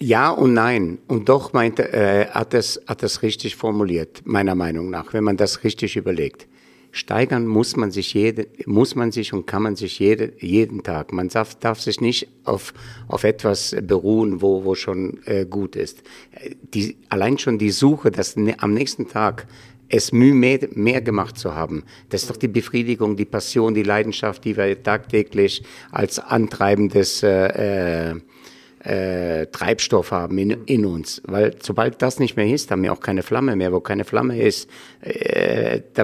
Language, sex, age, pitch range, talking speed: German, male, 60-79, 100-120 Hz, 180 wpm